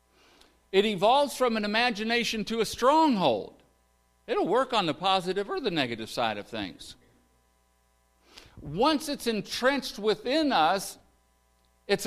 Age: 60-79